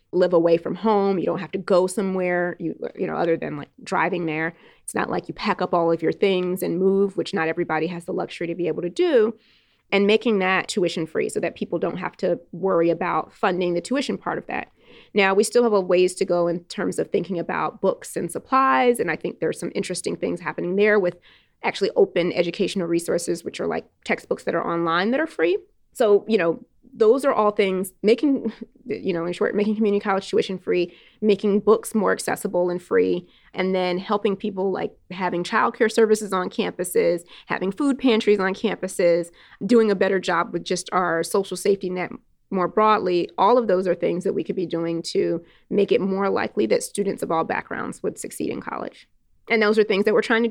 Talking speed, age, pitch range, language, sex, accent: 215 wpm, 20-39, 175-215 Hz, English, female, American